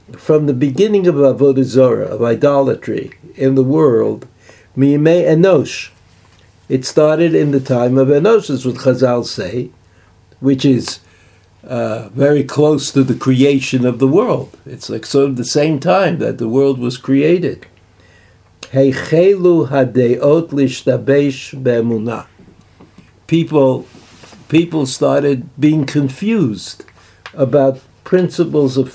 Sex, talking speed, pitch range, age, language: male, 120 wpm, 115-155 Hz, 60-79, English